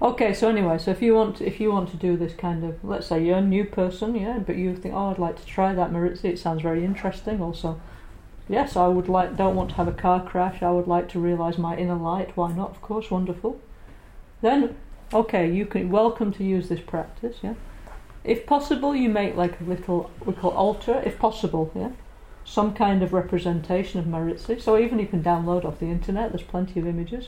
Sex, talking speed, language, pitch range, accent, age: female, 225 wpm, Italian, 175-210 Hz, British, 40-59